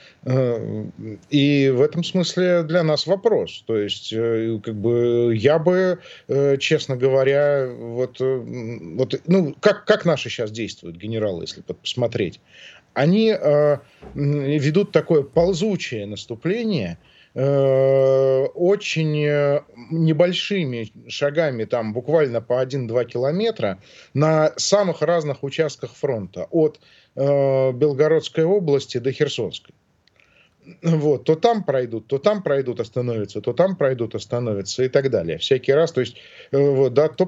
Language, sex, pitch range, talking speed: Russian, male, 120-155 Hz, 100 wpm